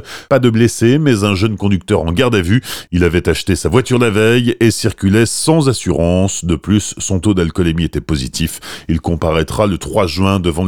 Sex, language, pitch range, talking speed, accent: male, French, 95-120 Hz, 195 wpm, French